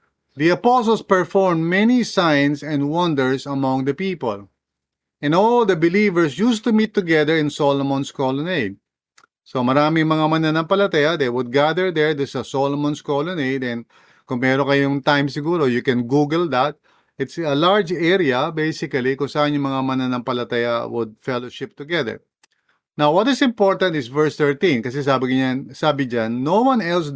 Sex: male